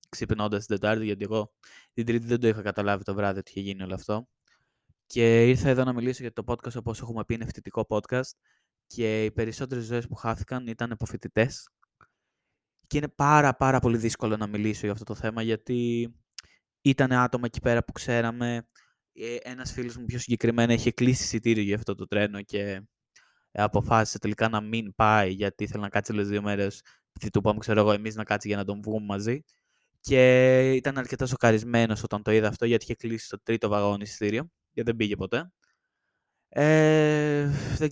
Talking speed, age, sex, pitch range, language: 180 wpm, 20-39, male, 105-120 Hz, Greek